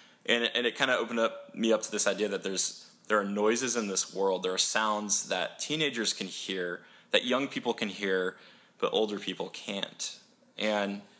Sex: male